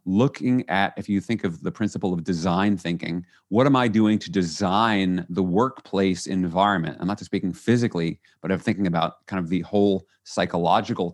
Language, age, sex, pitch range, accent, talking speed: English, 40-59, male, 90-115 Hz, American, 185 wpm